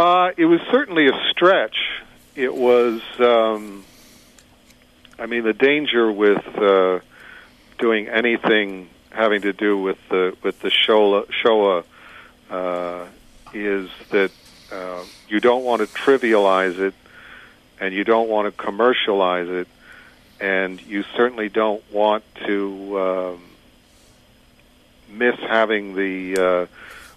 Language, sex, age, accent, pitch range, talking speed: English, male, 50-69, American, 95-110 Hz, 115 wpm